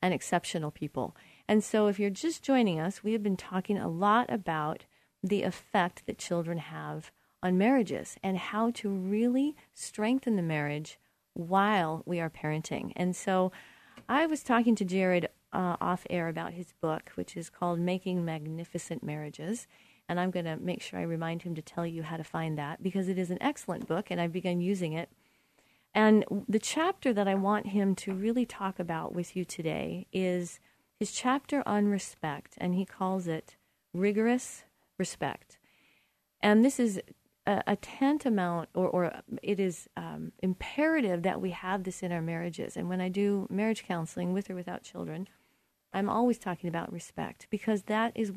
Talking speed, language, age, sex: 175 wpm, English, 40-59, female